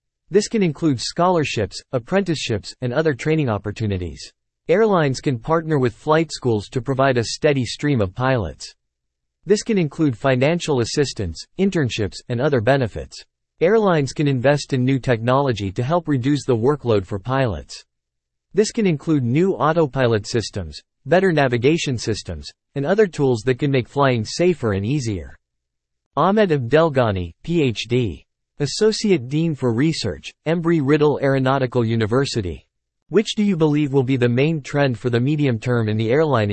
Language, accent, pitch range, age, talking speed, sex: English, American, 110-155 Hz, 40-59, 145 wpm, male